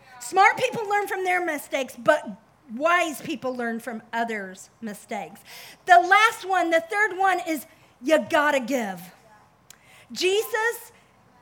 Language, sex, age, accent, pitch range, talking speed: English, female, 50-69, American, 285-400 Hz, 130 wpm